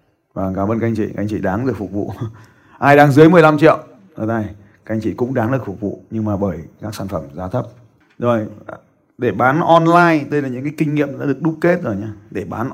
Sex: male